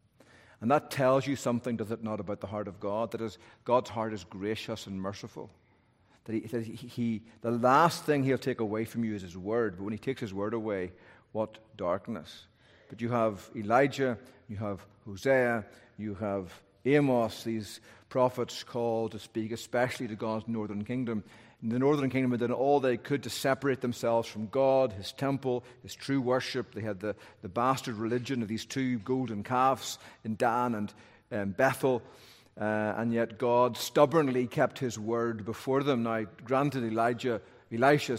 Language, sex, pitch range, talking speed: English, male, 110-125 Hz, 180 wpm